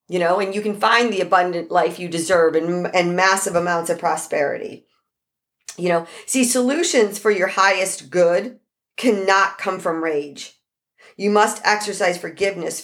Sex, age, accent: female, 40-59, American